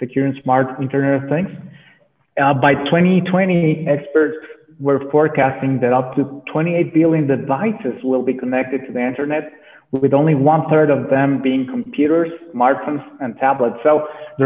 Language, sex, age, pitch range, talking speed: Spanish, male, 30-49, 135-155 Hz, 155 wpm